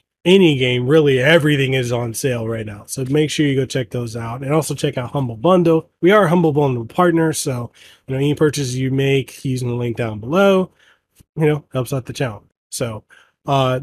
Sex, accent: male, American